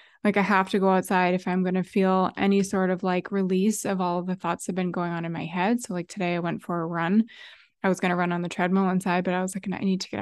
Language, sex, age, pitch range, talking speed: English, female, 20-39, 180-205 Hz, 315 wpm